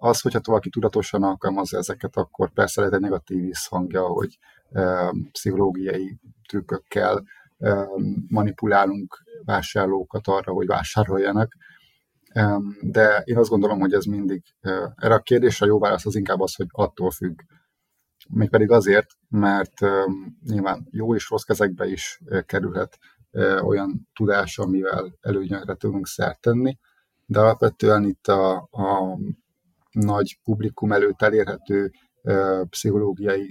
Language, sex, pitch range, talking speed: Hungarian, male, 95-105 Hz, 135 wpm